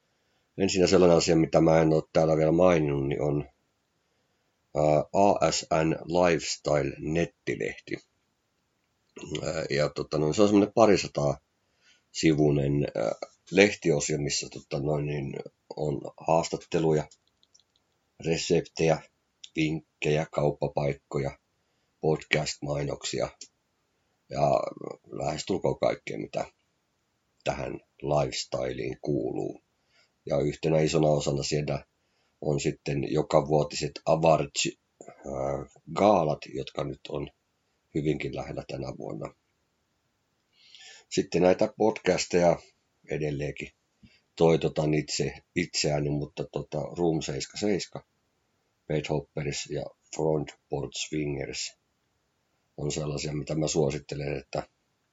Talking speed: 80 wpm